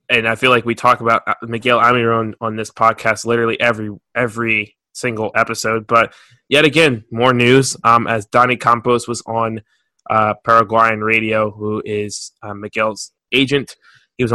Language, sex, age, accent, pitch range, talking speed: English, male, 20-39, American, 110-120 Hz, 160 wpm